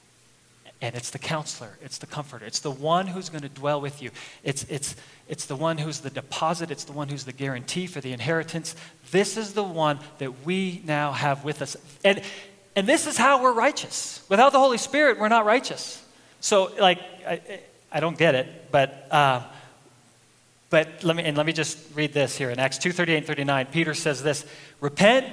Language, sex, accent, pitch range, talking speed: English, male, American, 135-170 Hz, 205 wpm